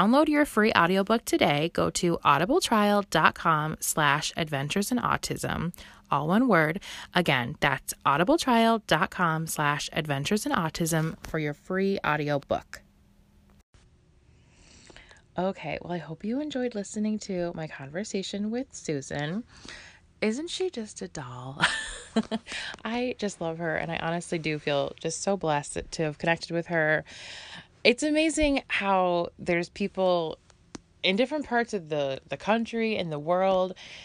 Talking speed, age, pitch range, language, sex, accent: 130 wpm, 20-39, 155-210 Hz, English, female, American